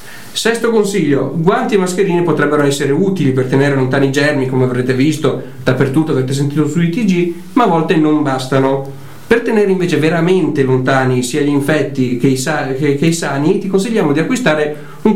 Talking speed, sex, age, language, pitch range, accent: 170 wpm, male, 40-59, Italian, 135-170 Hz, native